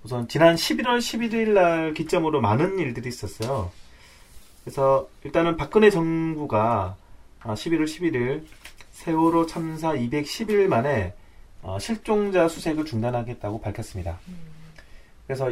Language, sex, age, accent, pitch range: Korean, male, 30-49, native, 105-165 Hz